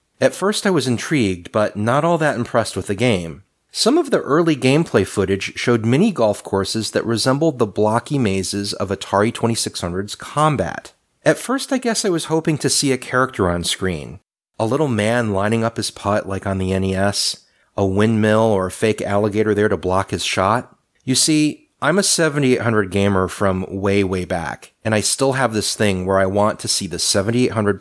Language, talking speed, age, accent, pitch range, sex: English, 190 wpm, 30-49, American, 95-125 Hz, male